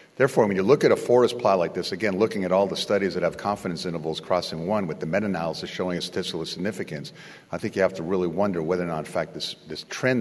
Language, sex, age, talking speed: English, male, 50-69, 260 wpm